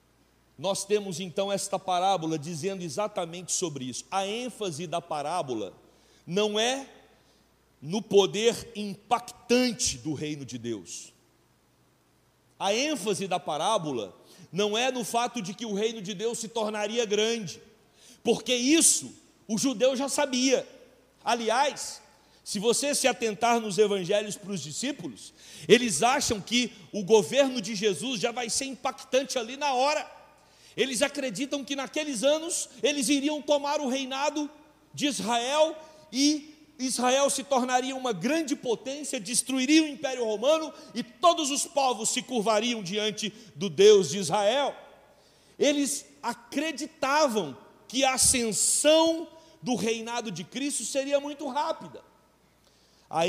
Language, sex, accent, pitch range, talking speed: Portuguese, male, Brazilian, 200-280 Hz, 130 wpm